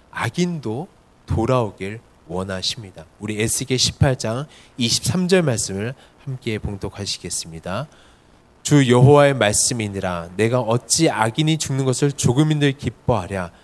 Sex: male